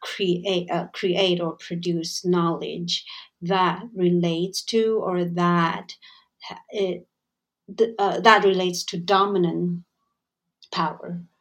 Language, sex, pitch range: Chinese, female, 170-195 Hz